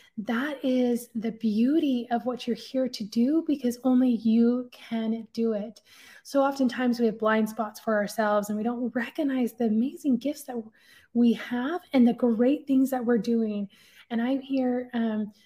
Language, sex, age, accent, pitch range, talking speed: English, female, 20-39, American, 225-270 Hz, 175 wpm